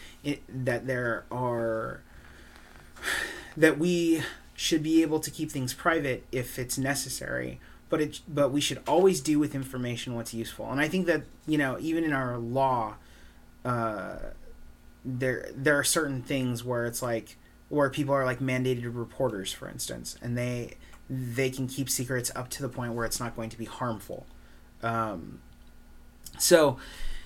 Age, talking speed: 30-49, 160 wpm